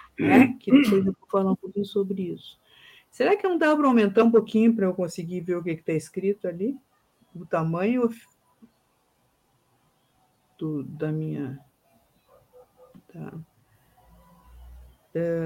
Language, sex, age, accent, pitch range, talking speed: Portuguese, female, 50-69, Brazilian, 160-205 Hz, 135 wpm